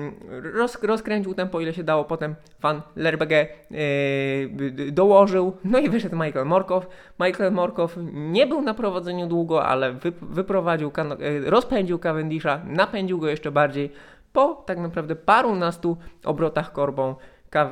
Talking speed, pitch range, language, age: 140 wpm, 145-185 Hz, Polish, 20-39